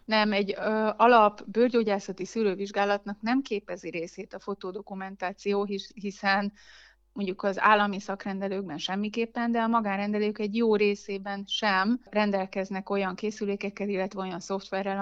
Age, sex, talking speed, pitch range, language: 30-49, female, 125 wpm, 195-220 Hz, Hungarian